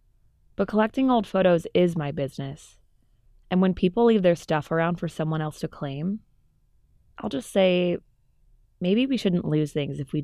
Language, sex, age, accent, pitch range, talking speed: English, female, 20-39, American, 145-180 Hz, 170 wpm